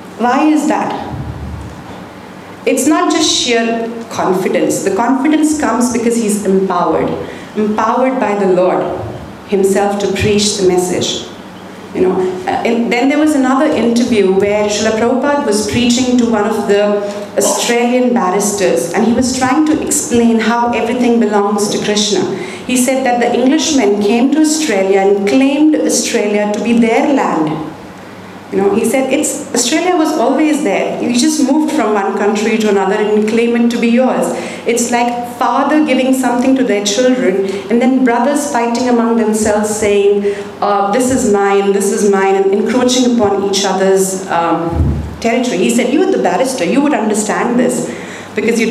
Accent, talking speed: Indian, 165 wpm